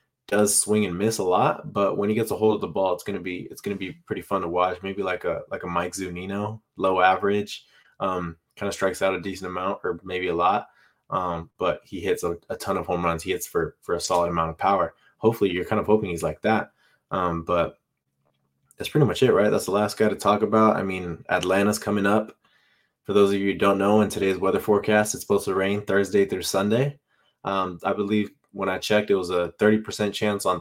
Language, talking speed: English, 245 wpm